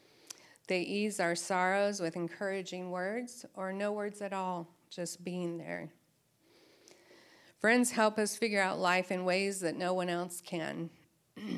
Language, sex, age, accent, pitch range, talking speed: English, female, 40-59, American, 175-210 Hz, 145 wpm